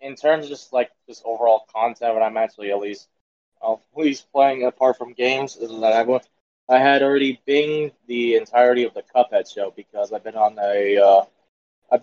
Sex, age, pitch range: male, 20-39, 115-150 Hz